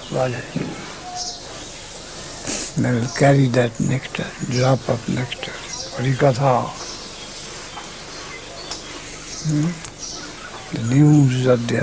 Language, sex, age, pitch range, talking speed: Russian, male, 60-79, 125-150 Hz, 60 wpm